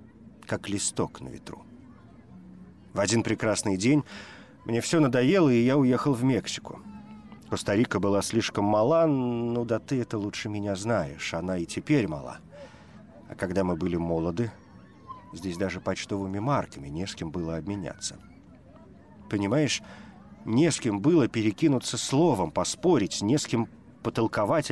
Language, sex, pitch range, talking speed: Russian, male, 90-125 Hz, 140 wpm